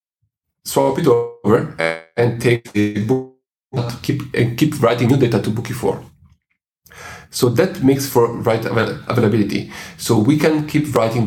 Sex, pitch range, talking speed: male, 105-130 Hz, 140 wpm